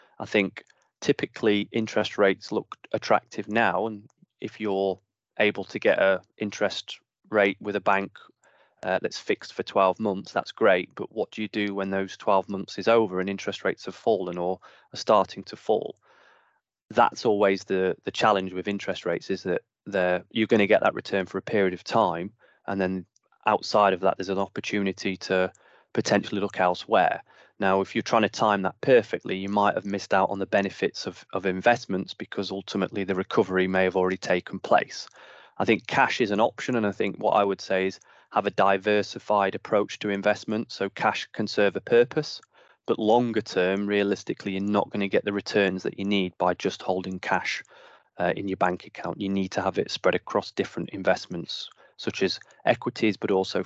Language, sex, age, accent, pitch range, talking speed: English, male, 20-39, British, 95-105 Hz, 190 wpm